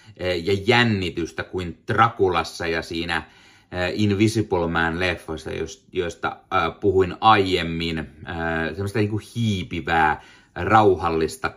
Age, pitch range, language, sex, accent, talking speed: 30-49, 90-125 Hz, Finnish, male, native, 75 wpm